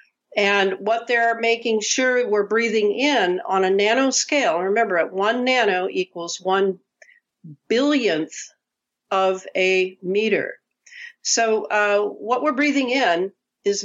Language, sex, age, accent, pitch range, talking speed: English, female, 60-79, American, 195-245 Hz, 120 wpm